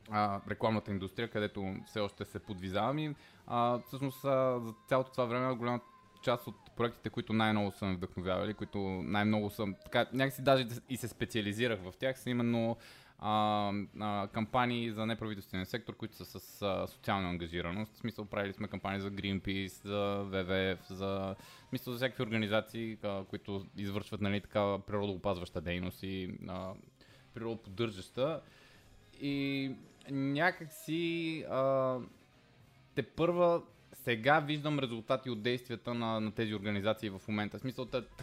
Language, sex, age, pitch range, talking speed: Bulgarian, male, 20-39, 100-125 Hz, 135 wpm